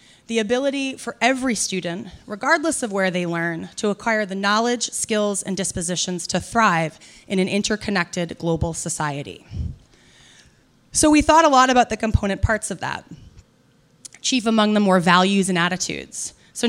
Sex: female